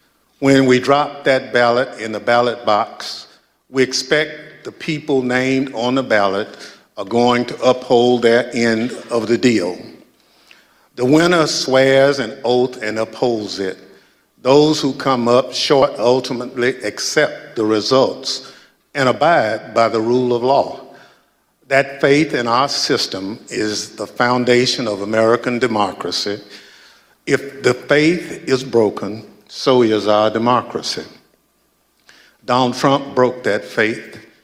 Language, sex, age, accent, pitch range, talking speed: English, male, 50-69, American, 120-135 Hz, 130 wpm